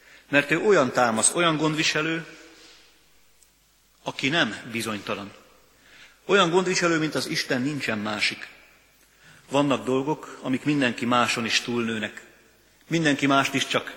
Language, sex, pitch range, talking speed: Hungarian, male, 115-150 Hz, 115 wpm